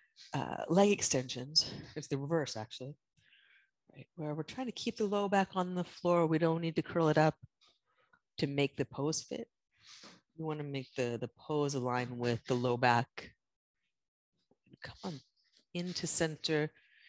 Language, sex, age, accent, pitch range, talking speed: English, female, 30-49, American, 155-210 Hz, 165 wpm